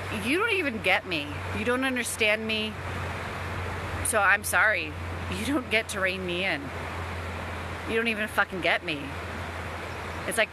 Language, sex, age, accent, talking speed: English, female, 30-49, American, 155 wpm